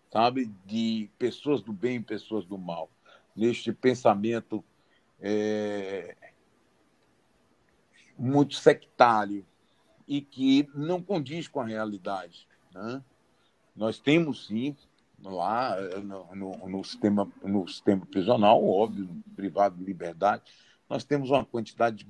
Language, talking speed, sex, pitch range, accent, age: Portuguese, 110 wpm, male, 105-130 Hz, Brazilian, 60-79